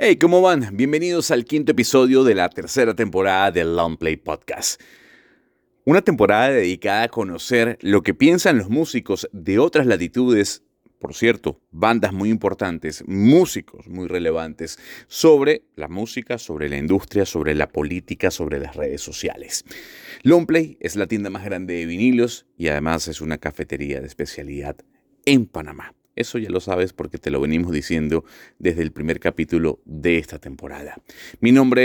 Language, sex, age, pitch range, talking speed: Spanish, male, 30-49, 80-120 Hz, 160 wpm